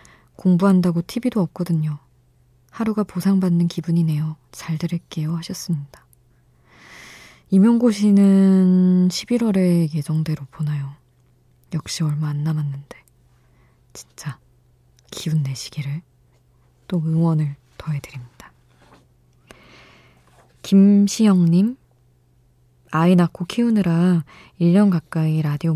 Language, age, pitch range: Korean, 20-39, 125-180 Hz